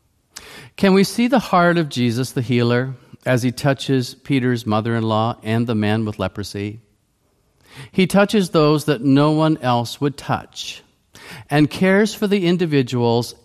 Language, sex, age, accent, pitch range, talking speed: English, male, 50-69, American, 110-155 Hz, 145 wpm